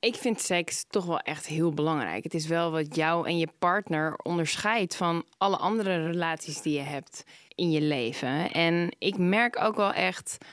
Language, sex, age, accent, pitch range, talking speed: Dutch, female, 20-39, Dutch, 160-210 Hz, 190 wpm